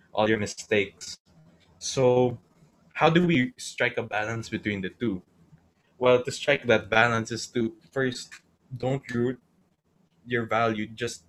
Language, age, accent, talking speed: English, 20-39, Filipino, 140 wpm